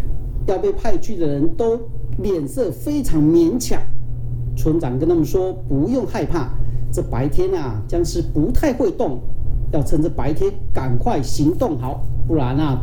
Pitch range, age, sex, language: 120-155 Hz, 40-59, male, Chinese